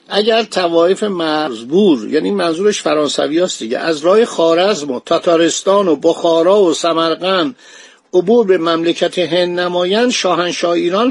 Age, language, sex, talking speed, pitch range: 60-79, Persian, male, 125 wpm, 160-205 Hz